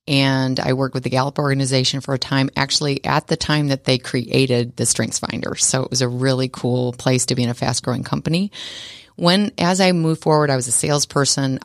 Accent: American